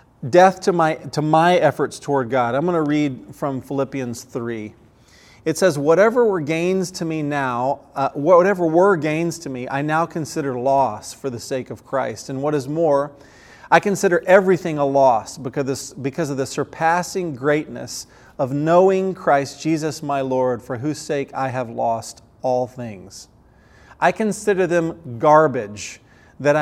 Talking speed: 165 wpm